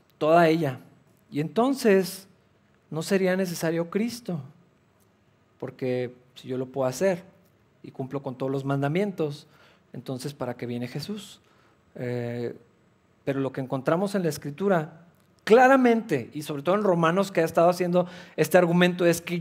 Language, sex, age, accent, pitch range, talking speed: Spanish, male, 40-59, Mexican, 145-185 Hz, 145 wpm